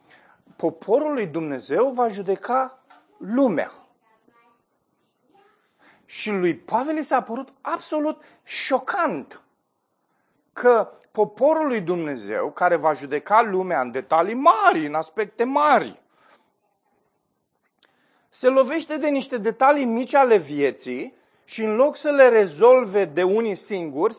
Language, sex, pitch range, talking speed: Romanian, male, 200-270 Hz, 110 wpm